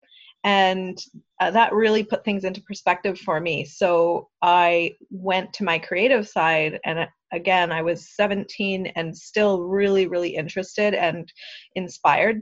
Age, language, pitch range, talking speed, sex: 30-49, English, 185-225 Hz, 145 wpm, female